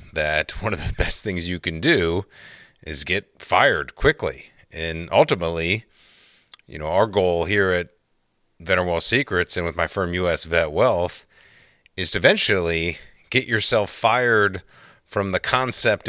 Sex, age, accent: male, 30-49, American